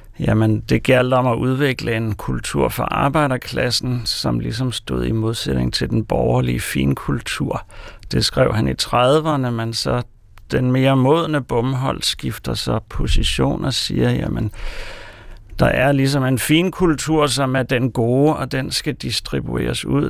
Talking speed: 150 wpm